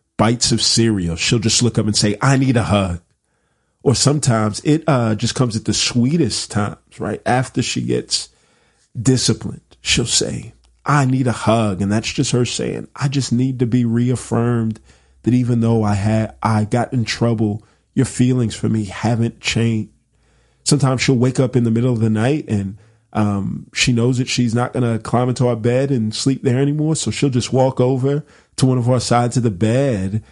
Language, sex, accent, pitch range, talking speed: English, male, American, 110-135 Hz, 200 wpm